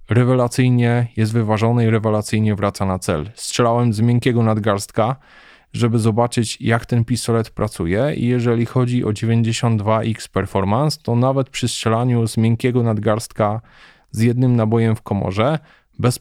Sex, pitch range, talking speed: male, 105-120 Hz, 135 wpm